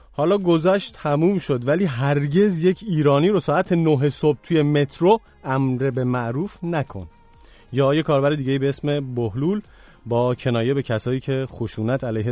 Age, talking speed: 30-49, 150 wpm